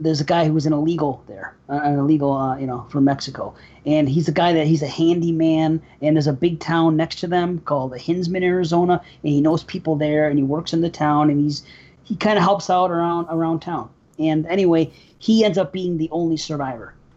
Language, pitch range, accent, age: English, 150-180 Hz, American, 30-49